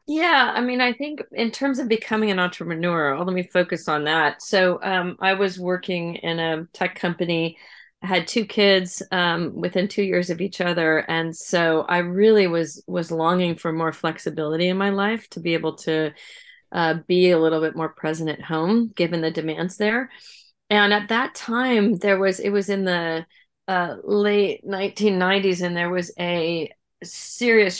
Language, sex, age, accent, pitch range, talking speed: English, female, 40-59, American, 165-200 Hz, 180 wpm